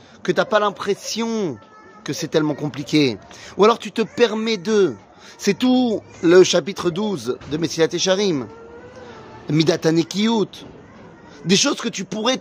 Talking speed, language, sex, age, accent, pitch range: 130 wpm, French, male, 30-49, French, 145-205 Hz